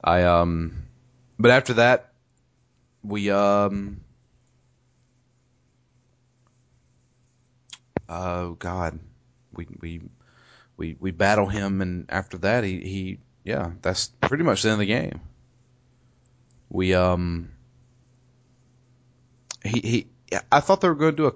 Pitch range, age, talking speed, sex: 95-125 Hz, 30-49, 115 wpm, male